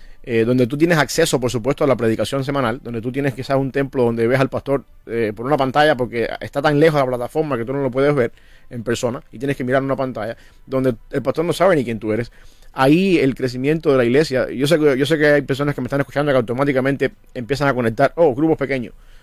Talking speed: 245 wpm